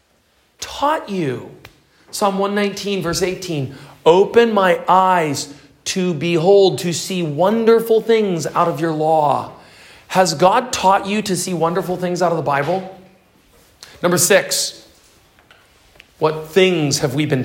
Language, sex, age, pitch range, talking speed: English, male, 40-59, 145-200 Hz, 130 wpm